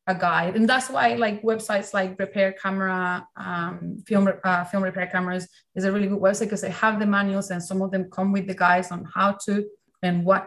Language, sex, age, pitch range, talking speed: English, female, 20-39, 185-210 Hz, 220 wpm